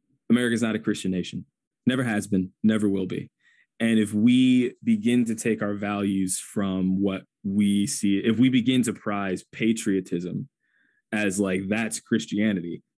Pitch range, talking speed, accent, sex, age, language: 100-125 Hz, 155 wpm, American, male, 20-39, English